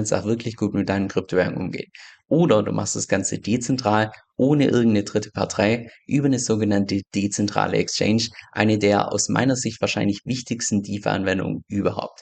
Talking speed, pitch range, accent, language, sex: 160 wpm, 100-120 Hz, German, German, male